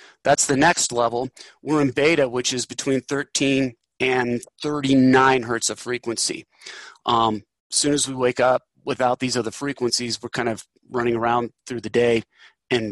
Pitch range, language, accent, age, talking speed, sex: 130-165 Hz, English, American, 30-49, 165 wpm, male